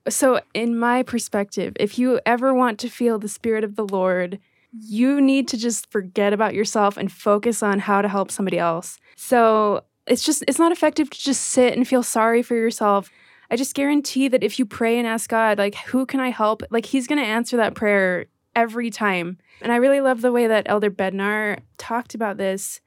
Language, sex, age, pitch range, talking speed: English, female, 20-39, 205-235 Hz, 210 wpm